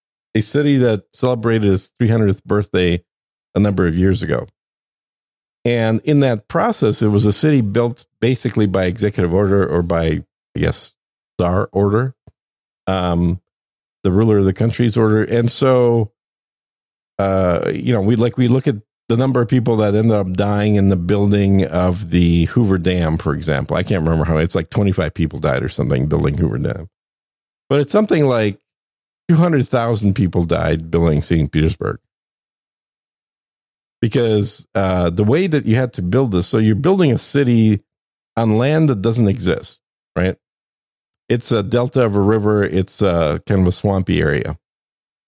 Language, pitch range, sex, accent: English, 95-120 Hz, male, American